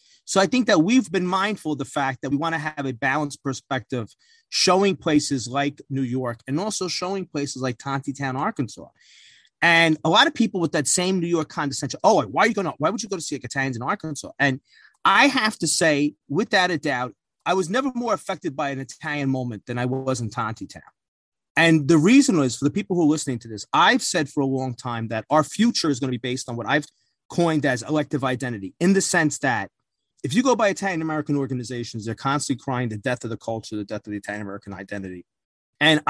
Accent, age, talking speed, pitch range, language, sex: American, 30-49, 230 wpm, 130-175 Hz, English, male